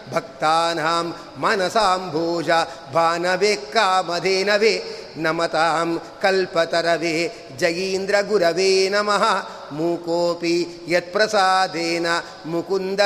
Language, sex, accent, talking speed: Kannada, male, native, 65 wpm